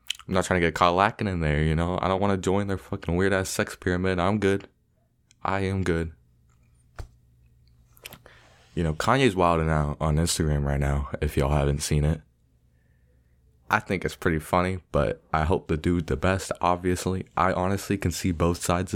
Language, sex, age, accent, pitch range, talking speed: English, male, 20-39, American, 70-85 Hz, 185 wpm